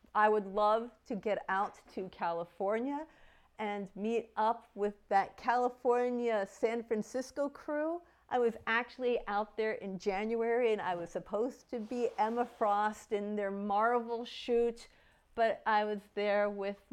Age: 50-69